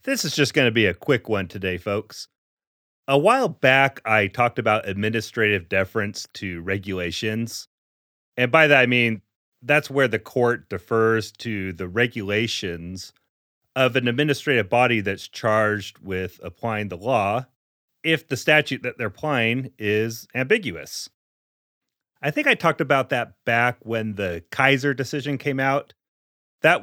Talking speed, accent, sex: 150 wpm, American, male